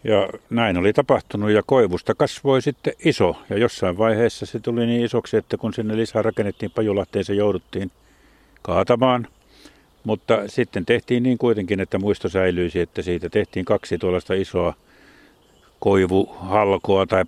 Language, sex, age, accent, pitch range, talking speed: Finnish, male, 60-79, native, 90-105 Hz, 140 wpm